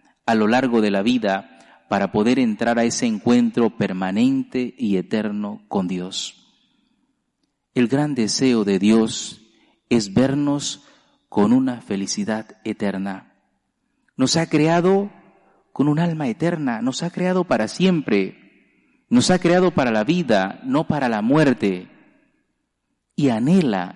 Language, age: Spanish, 40-59